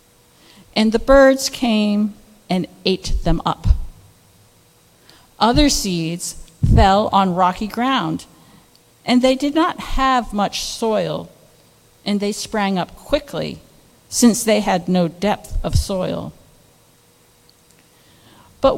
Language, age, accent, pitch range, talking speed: English, 50-69, American, 160-230 Hz, 110 wpm